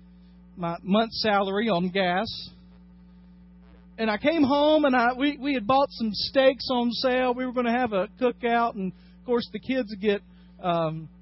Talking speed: 175 wpm